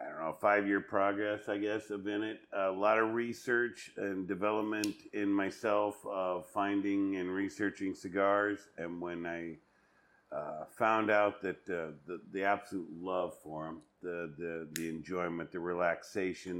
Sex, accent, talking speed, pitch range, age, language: male, American, 160 wpm, 90-105 Hz, 50-69, English